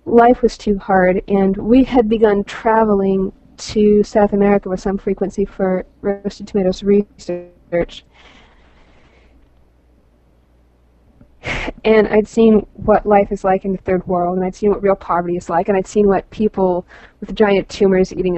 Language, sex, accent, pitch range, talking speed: English, female, American, 175-210 Hz, 155 wpm